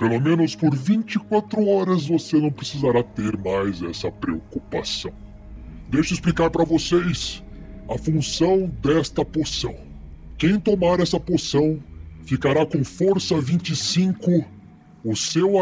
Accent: Brazilian